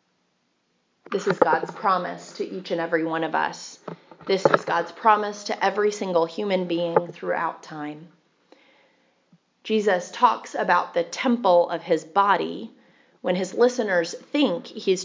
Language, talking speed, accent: English, 140 wpm, American